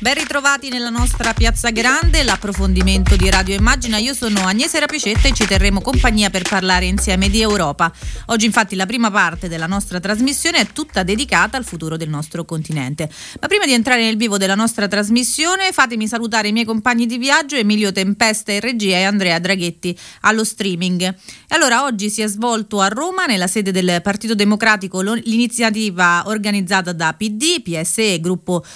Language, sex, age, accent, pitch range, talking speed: Italian, female, 30-49, native, 185-235 Hz, 175 wpm